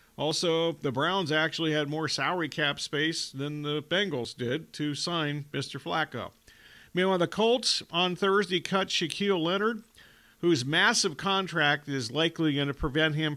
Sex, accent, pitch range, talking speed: male, American, 135-165 Hz, 155 wpm